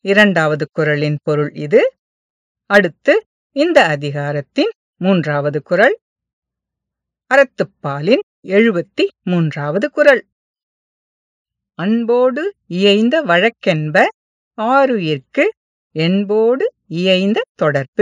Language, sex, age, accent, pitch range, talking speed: English, female, 50-69, Indian, 170-270 Hz, 75 wpm